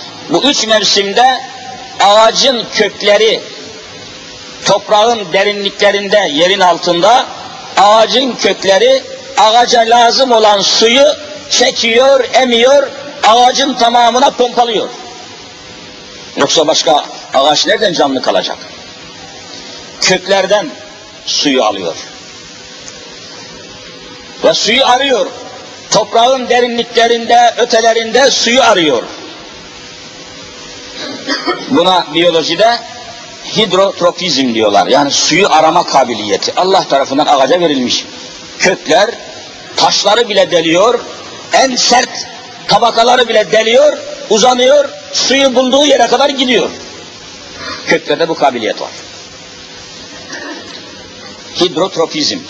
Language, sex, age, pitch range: Turkish, male, 50-69, 200-265 Hz